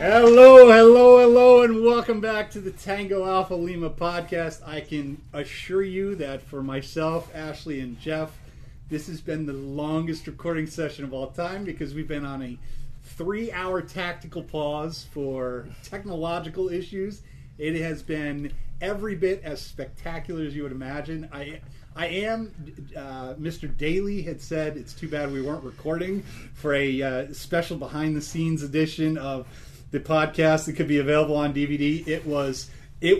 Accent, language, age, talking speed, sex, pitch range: American, English, 30-49, 155 wpm, male, 145-175 Hz